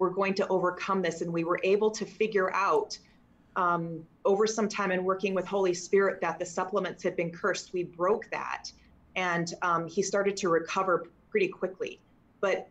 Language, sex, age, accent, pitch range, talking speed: English, female, 30-49, American, 190-245 Hz, 185 wpm